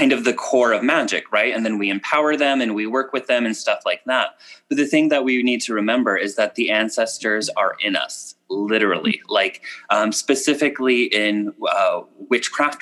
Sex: male